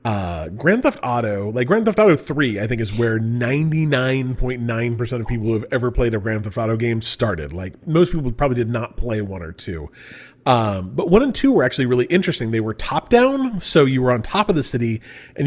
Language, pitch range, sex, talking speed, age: English, 115-160 Hz, male, 230 wpm, 30-49